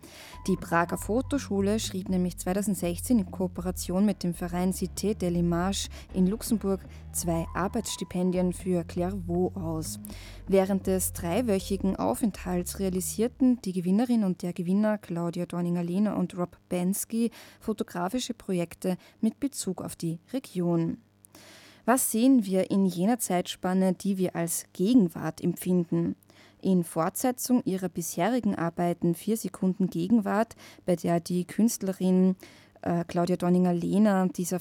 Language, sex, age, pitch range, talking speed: German, female, 20-39, 175-200 Hz, 120 wpm